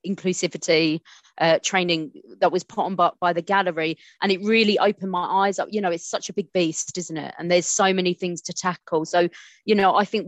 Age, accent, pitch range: 30-49, British, 170-210 Hz